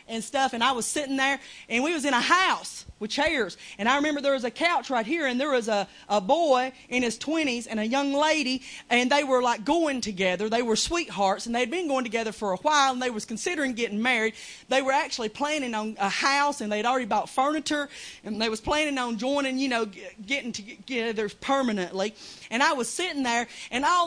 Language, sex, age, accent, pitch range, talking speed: English, female, 30-49, American, 210-290 Hz, 230 wpm